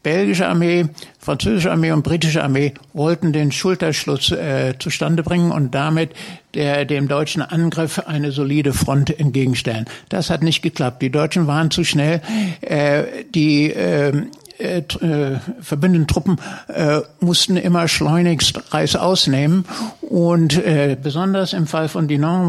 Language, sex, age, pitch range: German, male, 60-79, 145-170 Hz